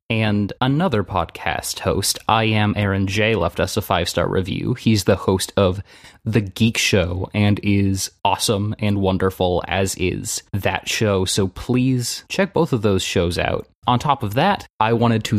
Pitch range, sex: 100-120 Hz, male